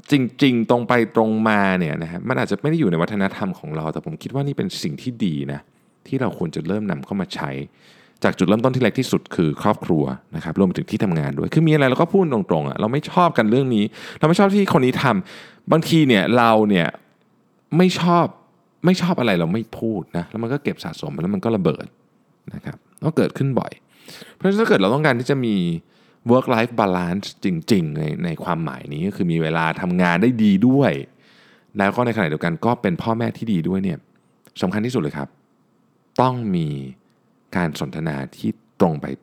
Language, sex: Thai, male